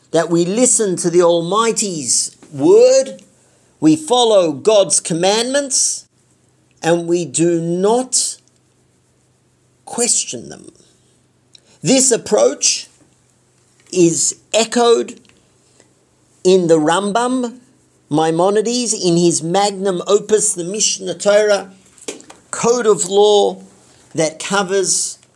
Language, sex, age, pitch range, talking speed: English, male, 50-69, 170-225 Hz, 90 wpm